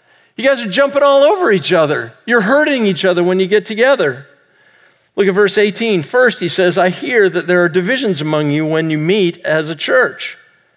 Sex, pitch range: male, 160-210 Hz